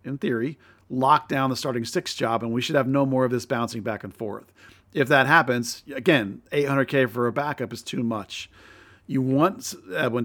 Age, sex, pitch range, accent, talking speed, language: 40-59, male, 115-135 Hz, American, 210 wpm, English